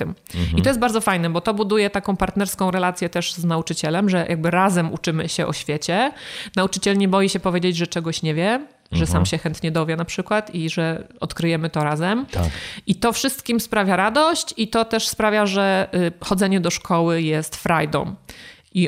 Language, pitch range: Polish, 170-215 Hz